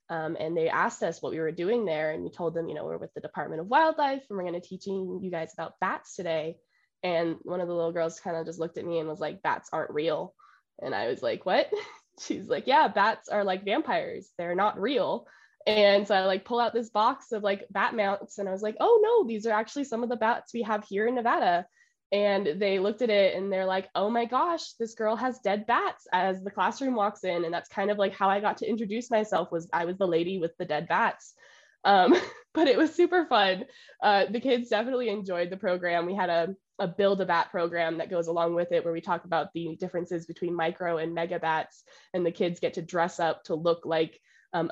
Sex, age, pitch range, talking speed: female, 10-29, 165-220 Hz, 245 wpm